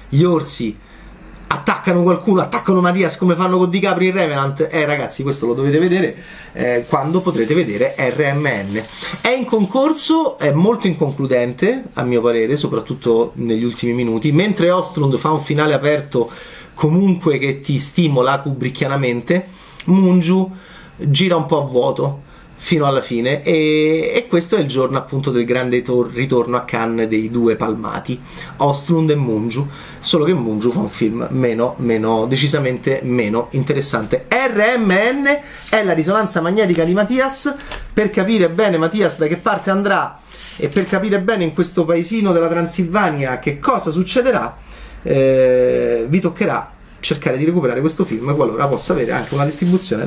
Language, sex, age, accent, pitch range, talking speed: Italian, male, 30-49, native, 125-185 Hz, 155 wpm